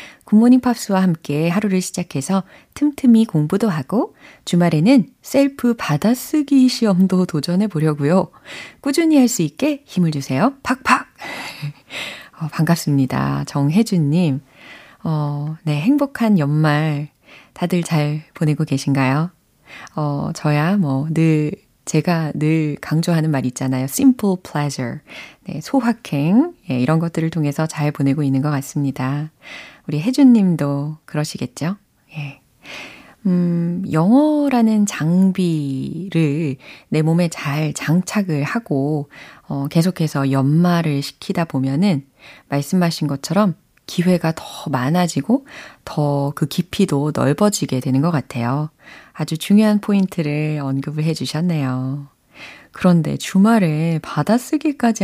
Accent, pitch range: native, 145-195 Hz